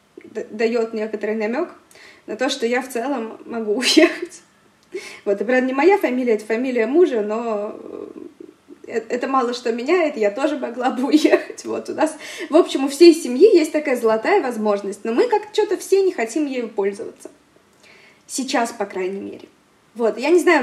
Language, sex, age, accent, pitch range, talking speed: Russian, female, 20-39, native, 230-335 Hz, 170 wpm